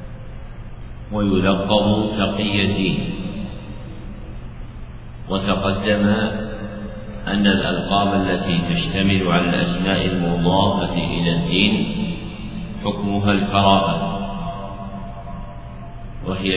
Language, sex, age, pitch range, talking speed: Arabic, male, 50-69, 95-105 Hz, 55 wpm